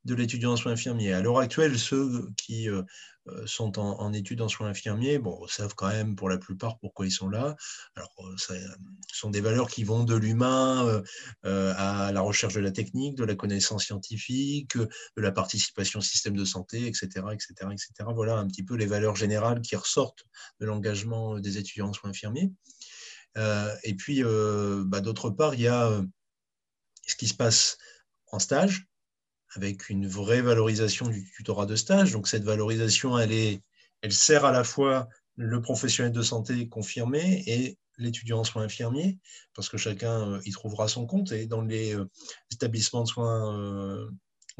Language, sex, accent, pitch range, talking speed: French, male, French, 105-120 Hz, 170 wpm